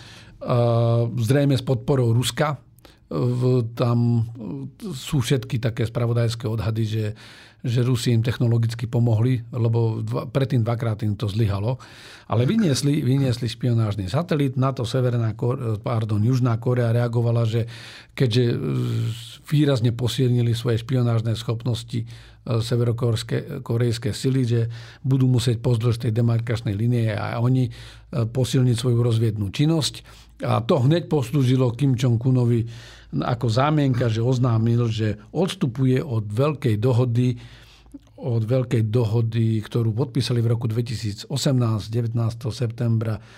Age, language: 50-69, English